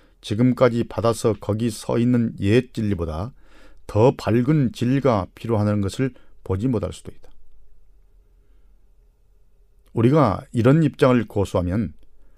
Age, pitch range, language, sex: 40-59, 95-120 Hz, Korean, male